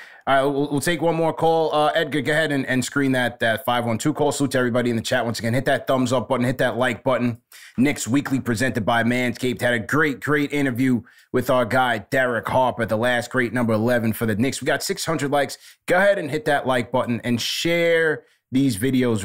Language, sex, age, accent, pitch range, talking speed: English, male, 20-39, American, 105-130 Hz, 230 wpm